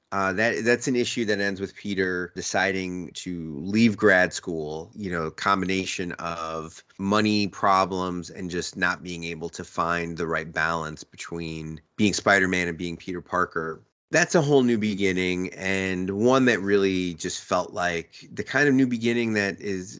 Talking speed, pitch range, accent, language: 170 wpm, 90-110 Hz, American, English